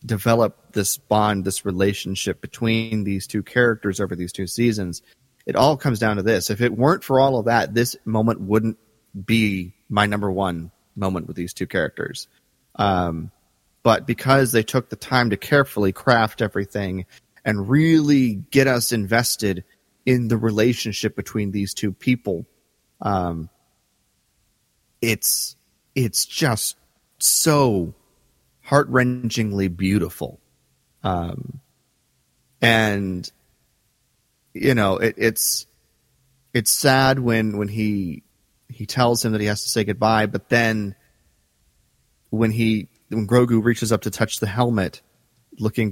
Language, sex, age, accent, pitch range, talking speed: English, male, 30-49, American, 100-120 Hz, 130 wpm